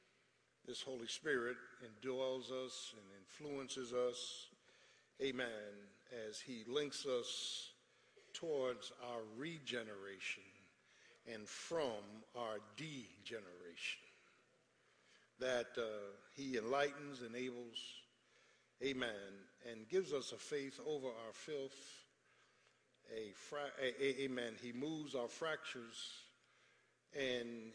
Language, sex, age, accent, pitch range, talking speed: English, male, 60-79, American, 110-135 Hz, 85 wpm